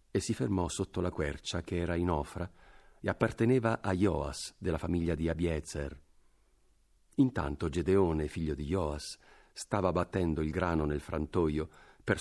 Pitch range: 80-100 Hz